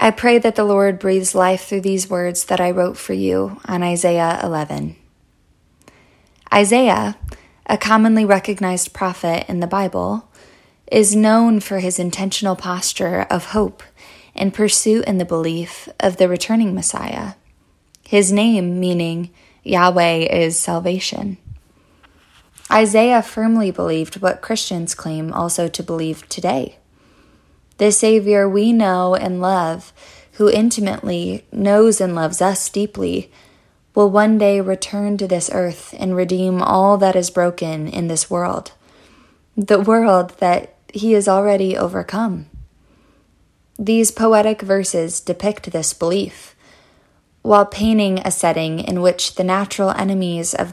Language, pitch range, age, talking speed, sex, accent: English, 175-205 Hz, 20-39, 130 wpm, female, American